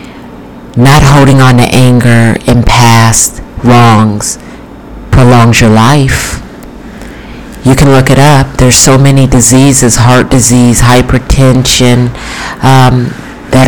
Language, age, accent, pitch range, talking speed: English, 50-69, American, 120-140 Hz, 110 wpm